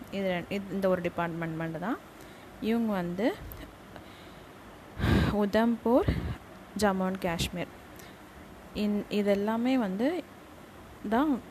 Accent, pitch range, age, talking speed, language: native, 185-225 Hz, 20-39, 80 wpm, Tamil